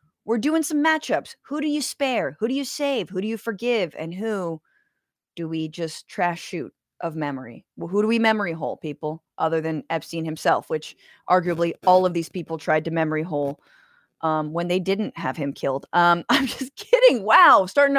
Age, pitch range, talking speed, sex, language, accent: 30-49, 175-265 Hz, 195 wpm, female, English, American